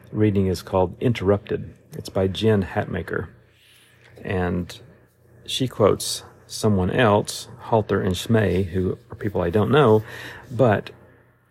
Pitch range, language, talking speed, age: 95-115 Hz, English, 120 wpm, 40-59